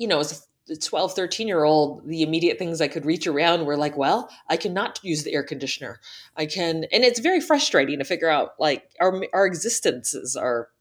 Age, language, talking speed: 30-49, English, 200 wpm